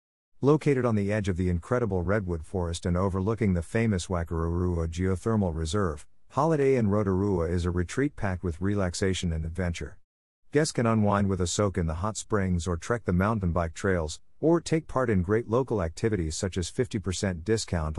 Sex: male